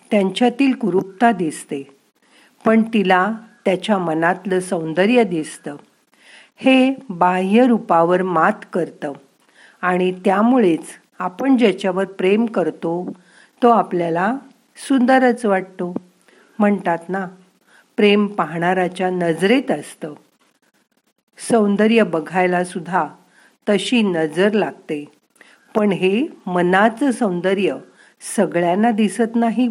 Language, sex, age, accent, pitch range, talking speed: Marathi, female, 50-69, native, 175-230 Hz, 85 wpm